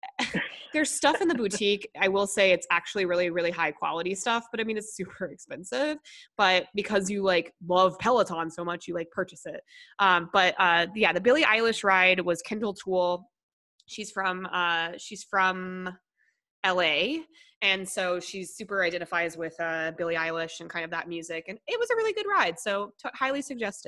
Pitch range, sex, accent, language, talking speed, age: 170-225 Hz, female, American, English, 185 wpm, 20-39